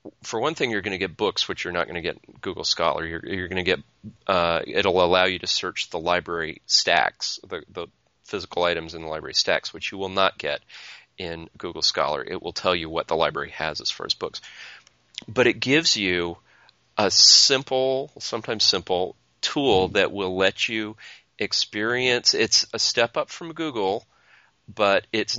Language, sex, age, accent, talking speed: English, male, 30-49, American, 195 wpm